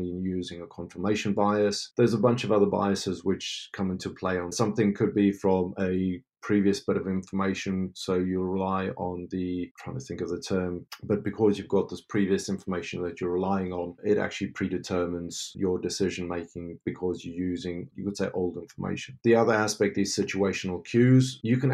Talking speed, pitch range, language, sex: 190 wpm, 90-105 Hz, English, male